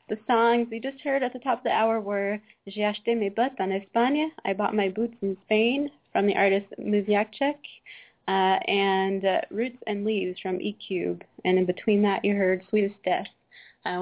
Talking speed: 185 wpm